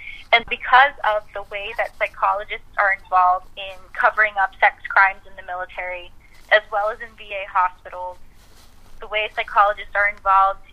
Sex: female